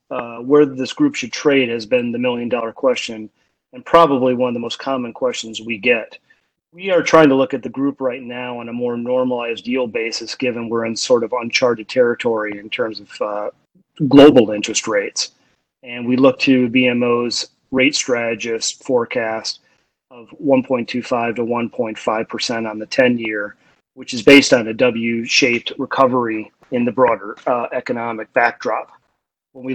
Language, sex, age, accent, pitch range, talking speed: English, male, 30-49, American, 115-130 Hz, 170 wpm